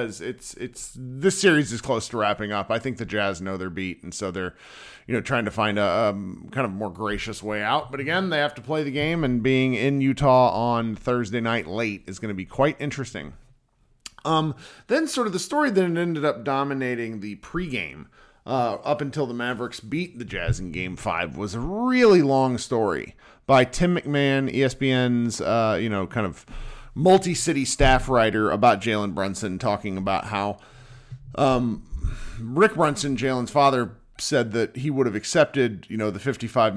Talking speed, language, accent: 190 wpm, English, American